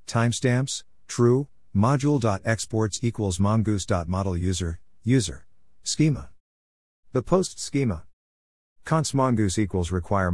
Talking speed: 85 wpm